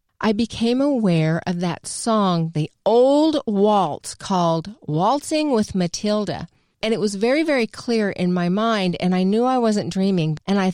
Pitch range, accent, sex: 165-230 Hz, American, female